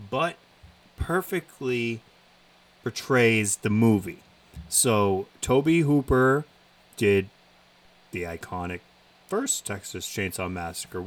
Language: English